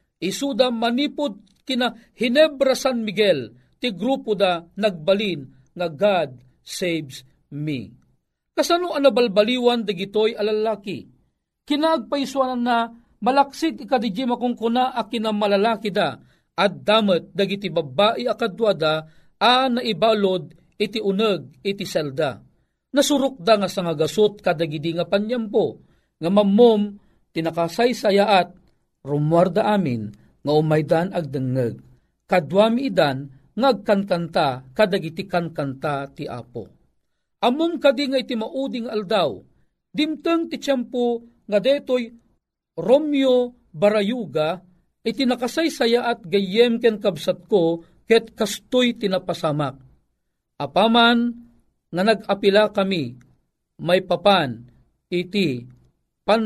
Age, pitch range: 40-59, 165-240 Hz